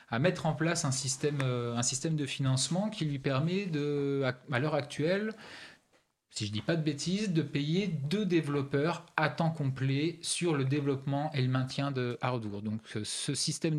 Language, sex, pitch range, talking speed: French, male, 130-160 Hz, 185 wpm